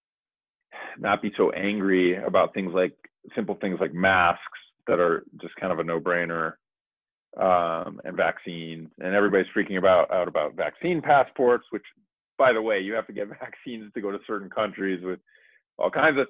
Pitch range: 90-120 Hz